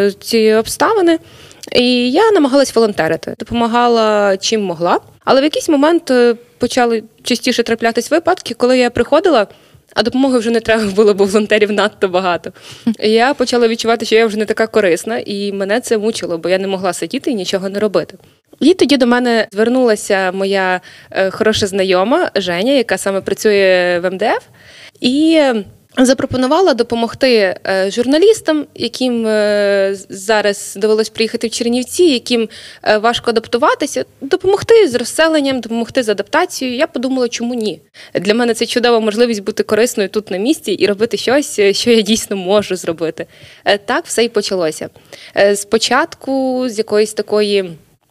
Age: 20-39